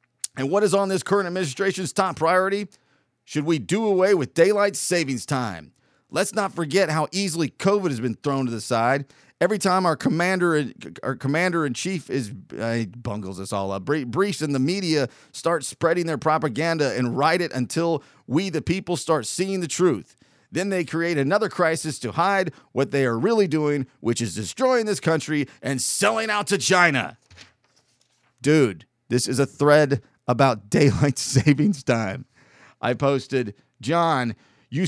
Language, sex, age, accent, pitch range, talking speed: English, male, 40-59, American, 120-170 Hz, 170 wpm